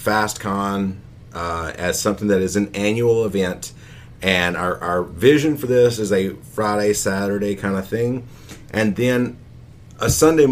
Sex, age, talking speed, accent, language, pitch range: male, 40-59, 145 wpm, American, English, 95-120 Hz